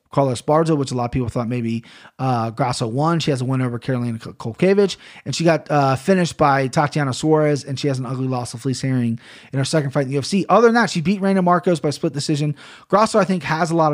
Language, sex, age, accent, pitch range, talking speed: English, male, 30-49, American, 135-170 Hz, 255 wpm